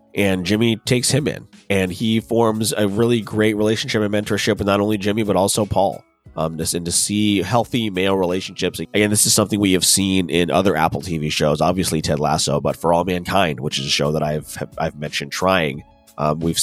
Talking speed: 215 wpm